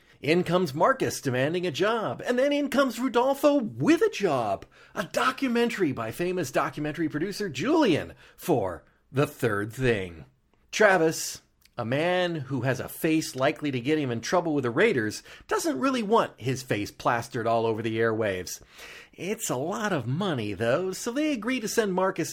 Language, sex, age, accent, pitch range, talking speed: English, male, 40-59, American, 125-205 Hz, 170 wpm